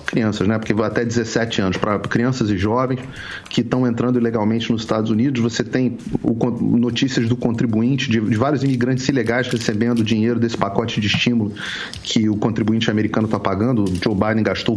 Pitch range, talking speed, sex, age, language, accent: 110-130 Hz, 180 wpm, male, 40-59, Portuguese, Brazilian